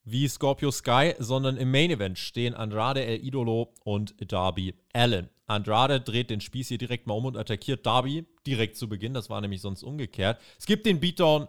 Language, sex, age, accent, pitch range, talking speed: German, male, 30-49, German, 115-150 Hz, 195 wpm